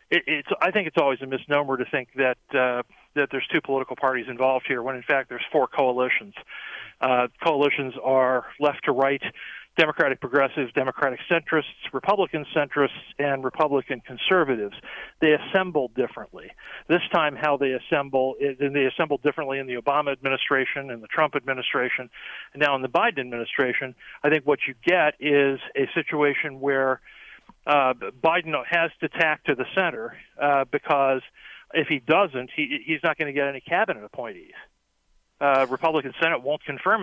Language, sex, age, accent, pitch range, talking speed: English, male, 40-59, American, 130-155 Hz, 160 wpm